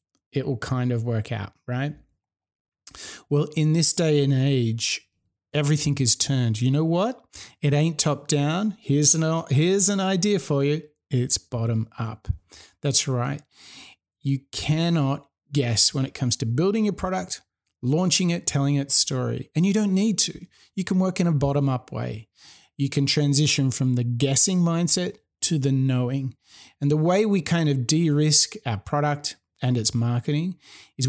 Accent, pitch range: Australian, 125-165 Hz